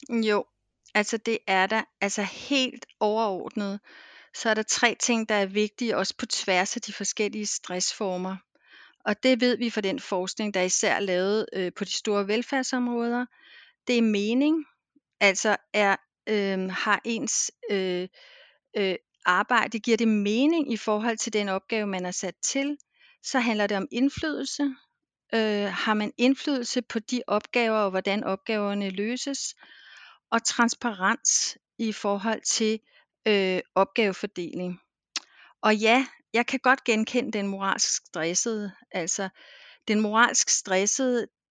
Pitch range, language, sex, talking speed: 200-245 Hz, Danish, female, 130 wpm